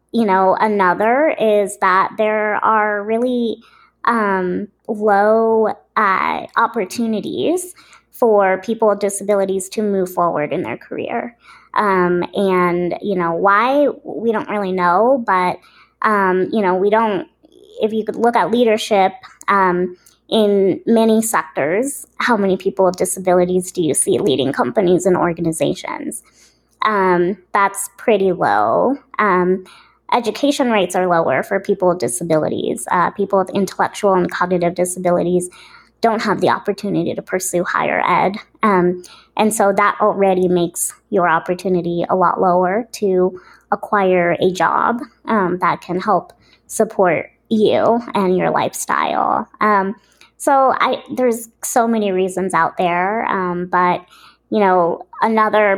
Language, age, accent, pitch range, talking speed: English, 20-39, American, 185-220 Hz, 135 wpm